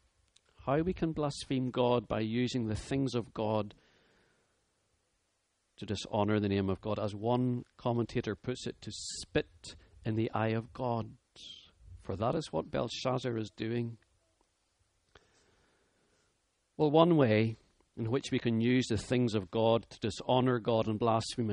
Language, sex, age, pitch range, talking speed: English, male, 40-59, 105-135 Hz, 150 wpm